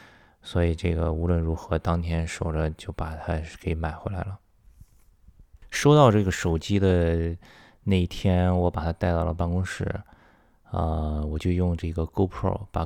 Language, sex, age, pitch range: Chinese, male, 20-39, 80-95 Hz